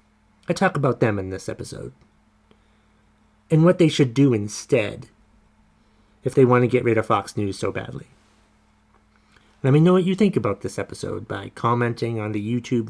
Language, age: English, 30-49